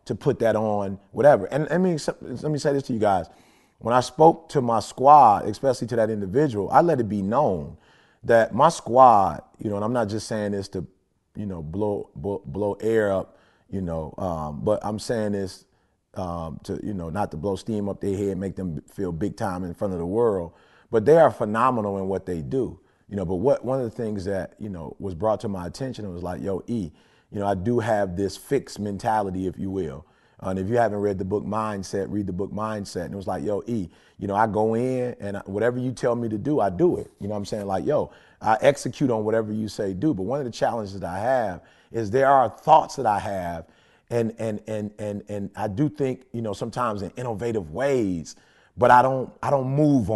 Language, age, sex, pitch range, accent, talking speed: English, 30-49, male, 95-120 Hz, American, 235 wpm